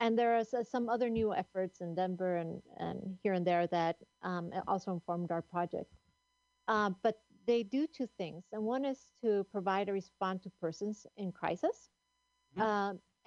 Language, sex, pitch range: English, female, 180-225 Hz